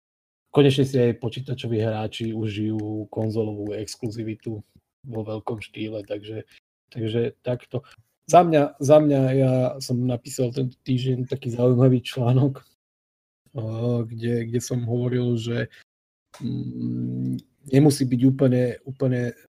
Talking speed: 110 wpm